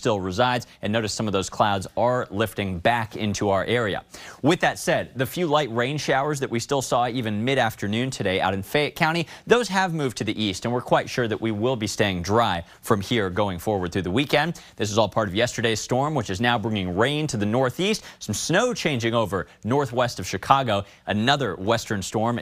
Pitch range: 110-150 Hz